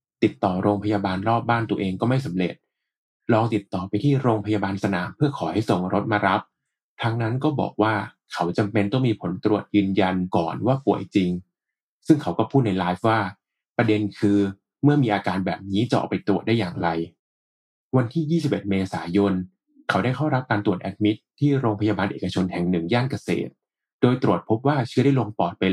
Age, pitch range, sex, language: 20-39, 95-125 Hz, male, Thai